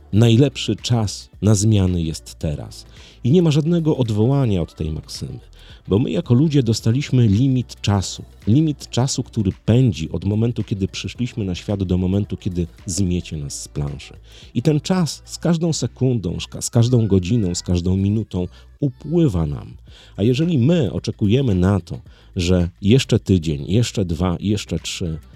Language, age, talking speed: Polish, 40-59, 155 wpm